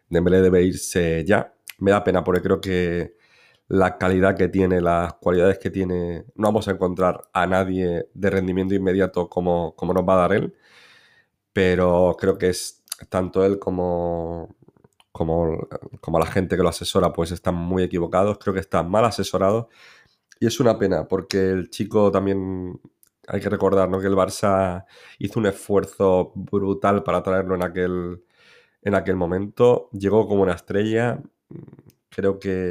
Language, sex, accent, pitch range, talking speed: Spanish, male, Spanish, 90-100 Hz, 165 wpm